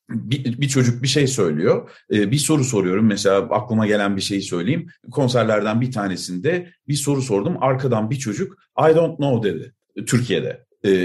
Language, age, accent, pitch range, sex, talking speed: Turkish, 50-69, native, 120-165 Hz, male, 155 wpm